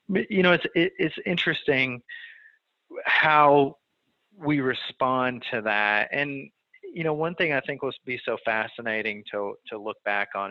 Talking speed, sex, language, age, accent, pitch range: 155 wpm, male, English, 30-49, American, 100-135 Hz